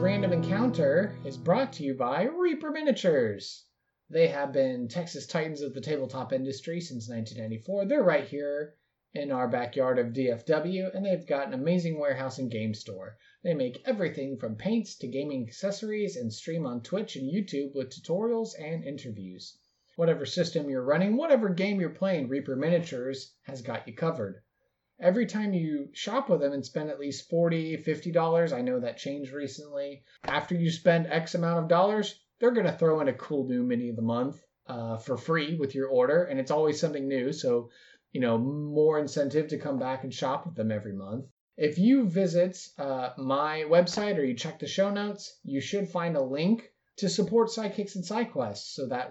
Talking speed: 190 wpm